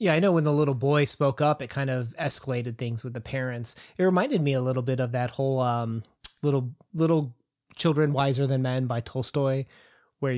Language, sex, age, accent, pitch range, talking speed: English, male, 20-39, American, 125-150 Hz, 210 wpm